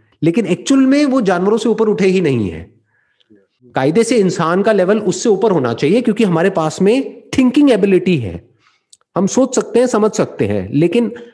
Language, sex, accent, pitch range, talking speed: English, male, Indian, 170-230 Hz, 185 wpm